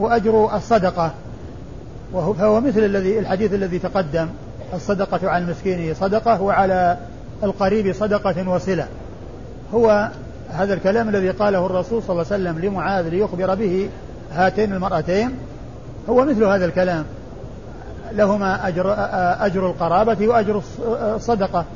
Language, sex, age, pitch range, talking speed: Arabic, male, 50-69, 175-205 Hz, 115 wpm